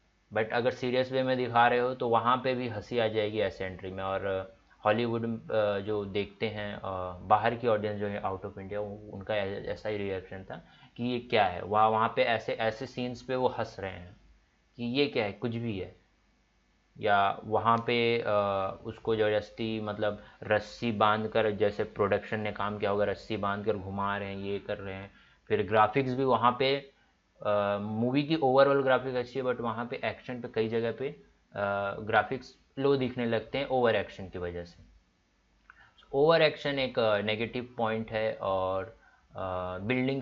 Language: Hindi